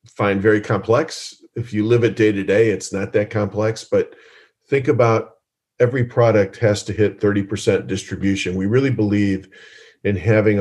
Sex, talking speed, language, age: male, 165 wpm, English, 40-59